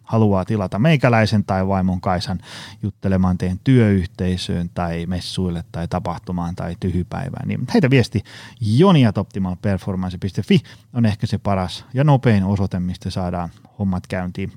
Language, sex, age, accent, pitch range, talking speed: Finnish, male, 30-49, native, 95-120 Hz, 125 wpm